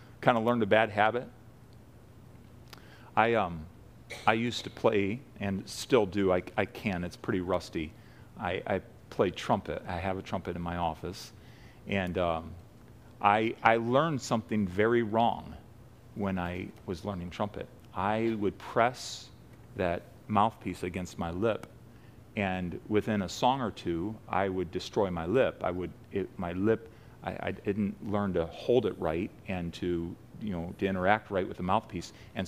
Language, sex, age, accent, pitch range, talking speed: English, male, 40-59, American, 95-115 Hz, 165 wpm